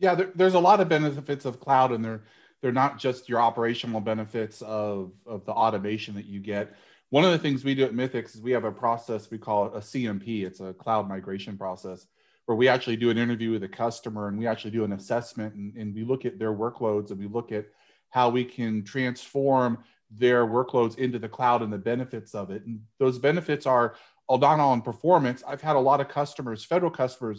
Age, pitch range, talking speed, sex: 30-49, 105-130 Hz, 220 wpm, male